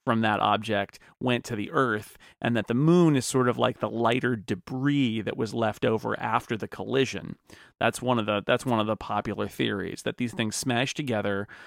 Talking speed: 205 wpm